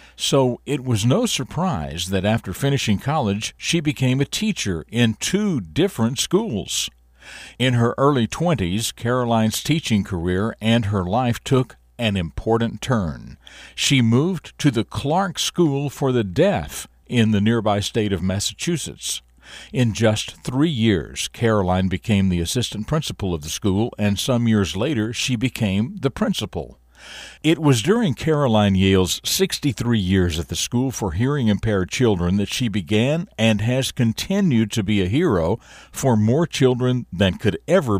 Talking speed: 150 wpm